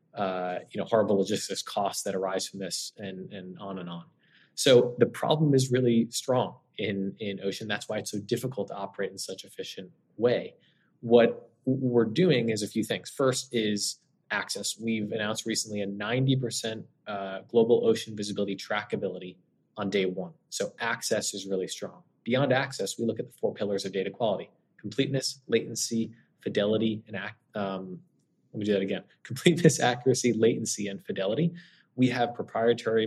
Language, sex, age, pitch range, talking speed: English, male, 20-39, 100-125 Hz, 165 wpm